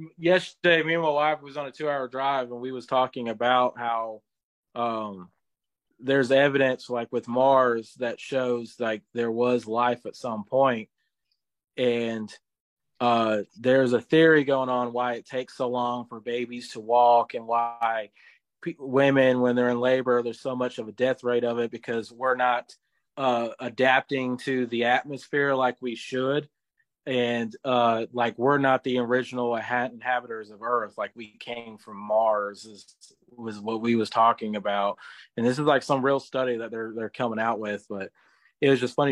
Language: English